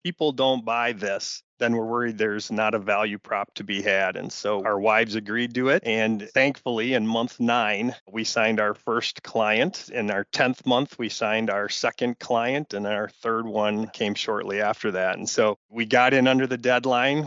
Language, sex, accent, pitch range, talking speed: English, male, American, 105-120 Hz, 200 wpm